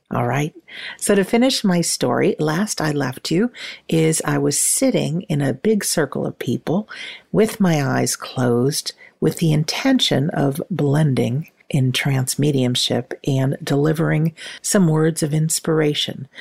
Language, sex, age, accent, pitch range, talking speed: English, female, 50-69, American, 135-185 Hz, 145 wpm